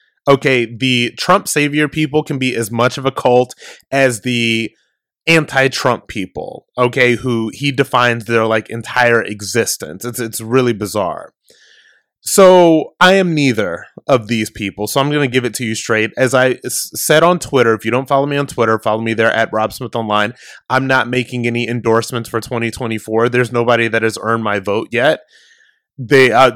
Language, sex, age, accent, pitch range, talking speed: English, male, 20-39, American, 115-130 Hz, 180 wpm